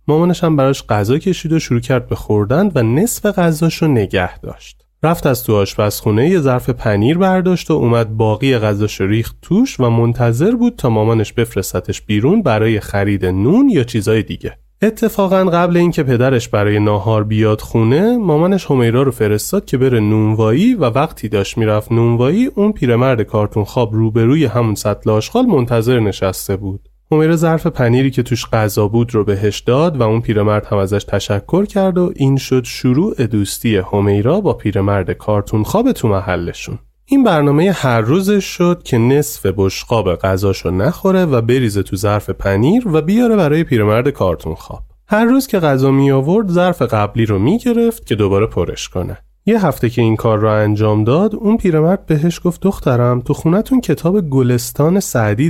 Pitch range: 105-170 Hz